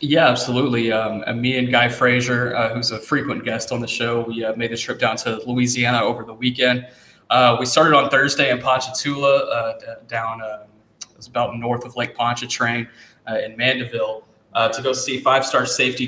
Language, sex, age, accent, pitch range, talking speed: English, male, 20-39, American, 115-130 Hz, 200 wpm